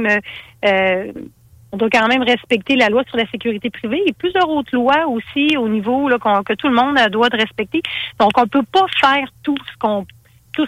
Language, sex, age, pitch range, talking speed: French, female, 40-59, 195-245 Hz, 215 wpm